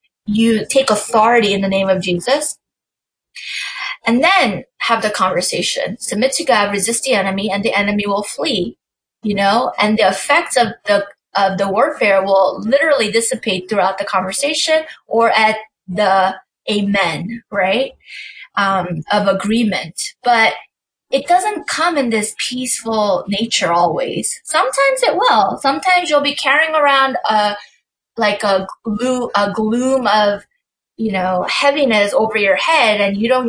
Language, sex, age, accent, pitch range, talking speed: English, female, 20-39, American, 200-260 Hz, 145 wpm